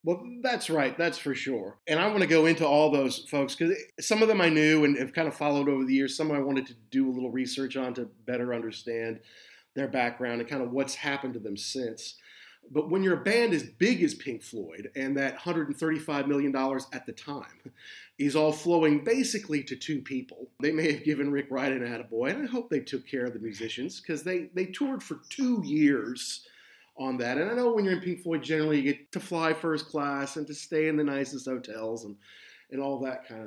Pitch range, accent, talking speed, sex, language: 130-165 Hz, American, 230 wpm, male, English